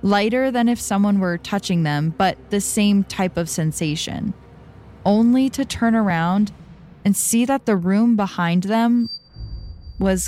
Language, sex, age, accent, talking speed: English, female, 10-29, American, 145 wpm